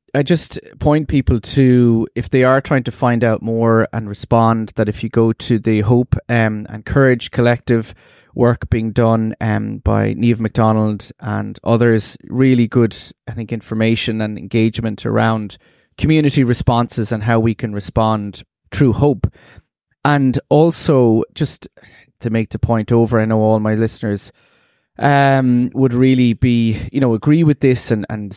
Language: English